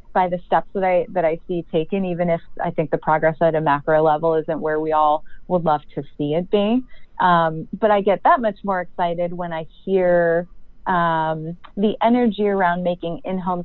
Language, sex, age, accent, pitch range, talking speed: English, female, 30-49, American, 160-190 Hz, 200 wpm